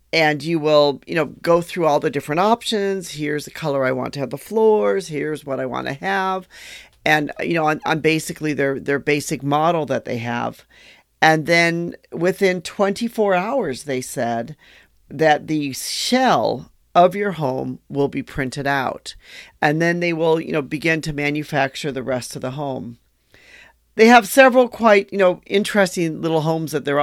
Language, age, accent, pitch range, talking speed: English, 40-59, American, 135-170 Hz, 180 wpm